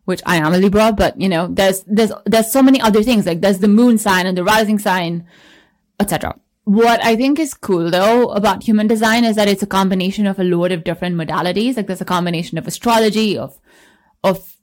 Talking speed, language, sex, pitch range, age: 220 wpm, English, female, 175-215 Hz, 20-39